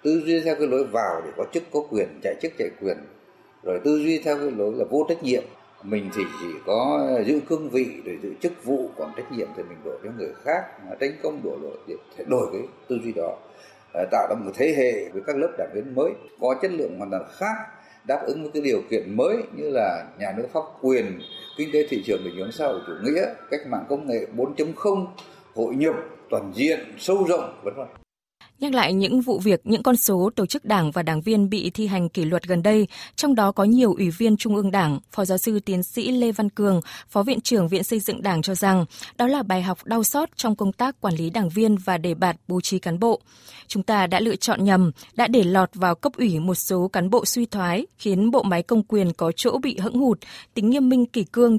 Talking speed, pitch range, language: 240 wpm, 175-230 Hz, Vietnamese